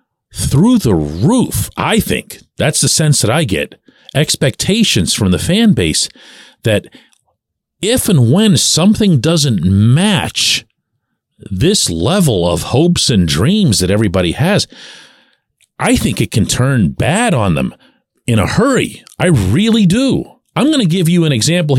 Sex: male